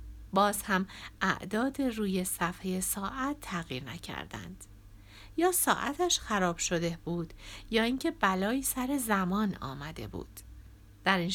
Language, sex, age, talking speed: Persian, female, 60-79, 115 wpm